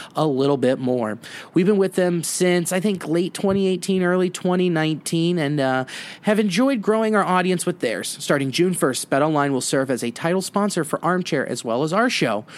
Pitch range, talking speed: 150-190 Hz, 200 wpm